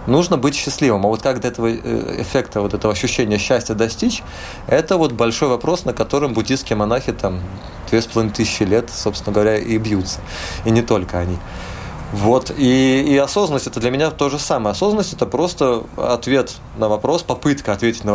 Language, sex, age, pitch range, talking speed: Russian, male, 20-39, 95-120 Hz, 170 wpm